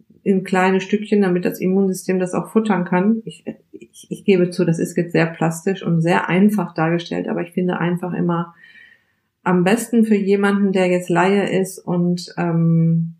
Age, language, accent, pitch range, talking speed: 50-69, German, German, 165-200 Hz, 175 wpm